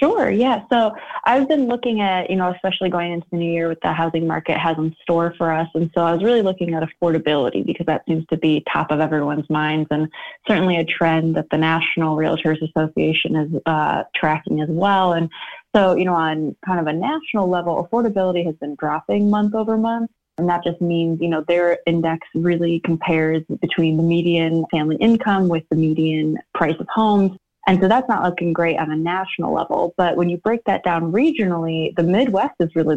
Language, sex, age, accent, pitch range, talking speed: English, female, 20-39, American, 160-180 Hz, 205 wpm